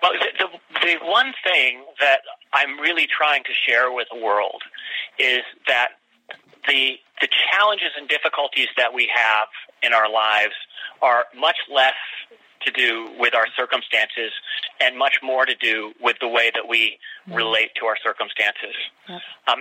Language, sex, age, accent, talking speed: English, male, 30-49, American, 155 wpm